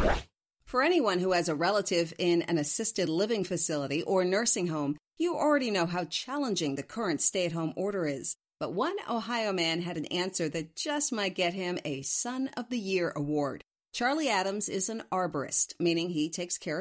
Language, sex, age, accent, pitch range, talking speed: English, female, 50-69, American, 165-245 Hz, 180 wpm